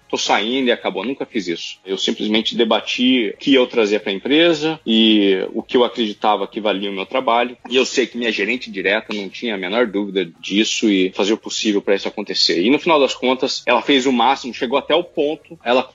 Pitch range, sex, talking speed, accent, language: 105-140 Hz, male, 230 wpm, Brazilian, English